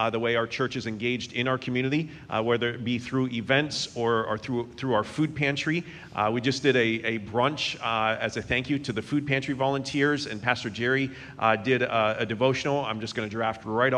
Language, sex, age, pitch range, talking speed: English, male, 40-59, 110-130 Hz, 230 wpm